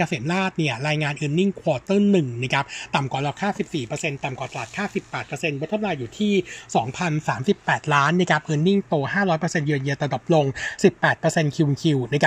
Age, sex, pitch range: 60-79, male, 145-185 Hz